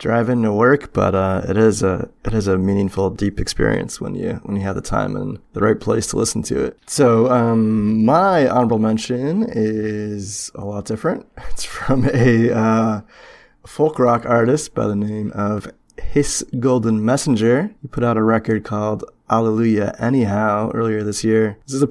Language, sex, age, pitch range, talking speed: English, male, 20-39, 110-130 Hz, 180 wpm